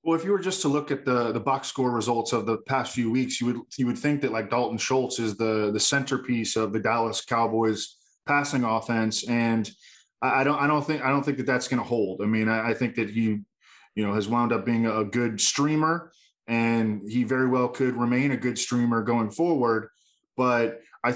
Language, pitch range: English, 115-135 Hz